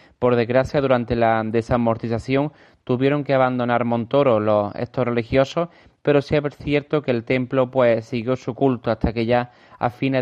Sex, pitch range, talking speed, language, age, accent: male, 120-140 Hz, 165 wpm, Spanish, 30-49, Spanish